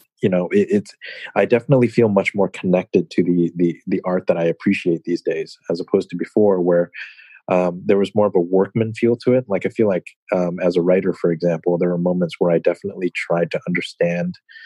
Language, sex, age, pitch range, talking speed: English, male, 30-49, 90-105 Hz, 220 wpm